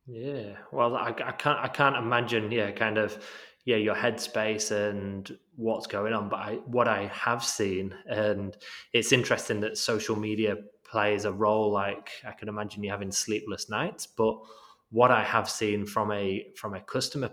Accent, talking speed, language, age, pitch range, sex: British, 175 wpm, English, 20-39, 105-120 Hz, male